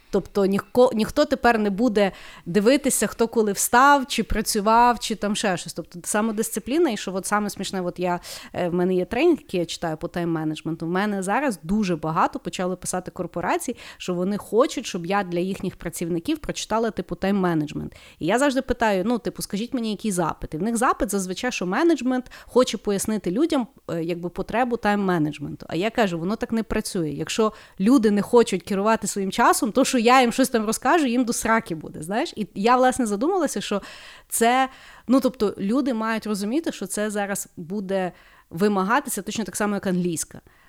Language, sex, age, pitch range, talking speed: Ukrainian, female, 30-49, 180-235 Hz, 180 wpm